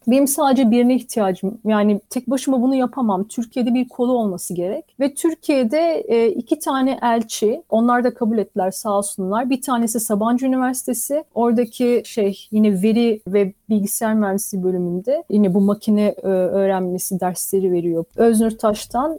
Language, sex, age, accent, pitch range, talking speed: Turkish, female, 40-59, native, 205-255 Hz, 140 wpm